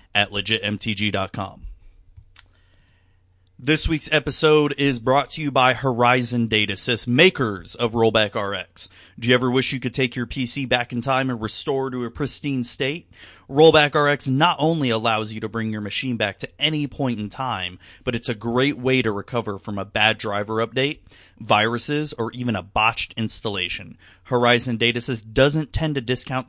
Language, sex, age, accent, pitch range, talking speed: English, male, 30-49, American, 105-130 Hz, 170 wpm